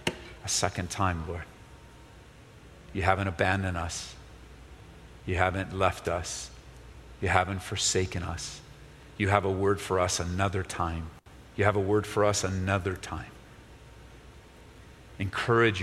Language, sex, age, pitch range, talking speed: English, male, 40-59, 95-110 Hz, 125 wpm